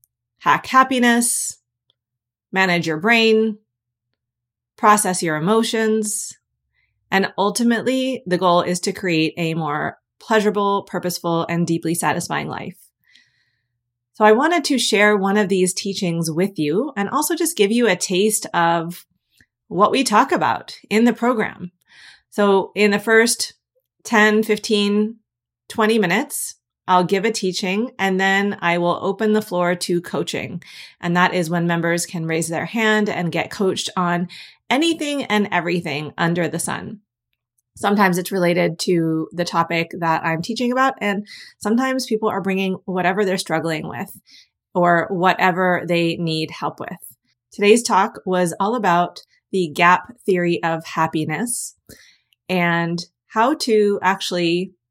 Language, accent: English, American